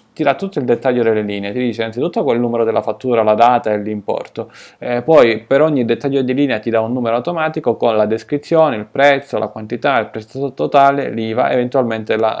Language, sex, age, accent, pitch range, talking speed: Italian, male, 20-39, native, 110-130 Hz, 210 wpm